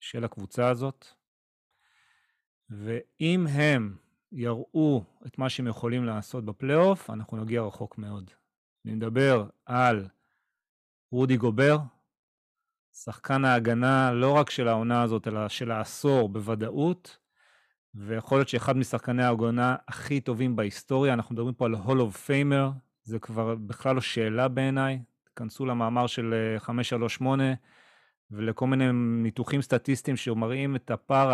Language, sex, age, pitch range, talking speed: Hebrew, male, 30-49, 115-145 Hz, 120 wpm